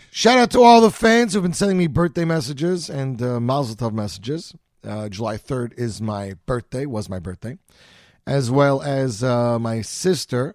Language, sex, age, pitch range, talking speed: English, male, 40-59, 105-140 Hz, 190 wpm